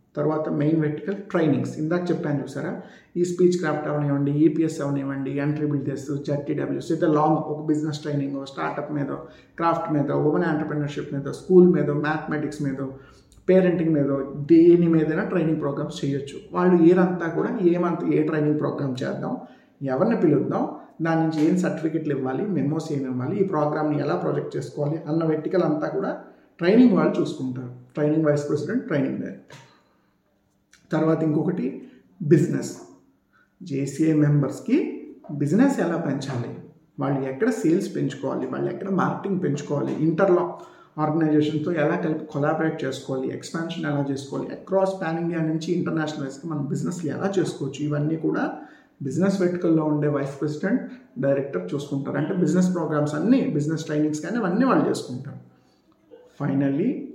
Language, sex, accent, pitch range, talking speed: Telugu, male, native, 145-170 Hz, 135 wpm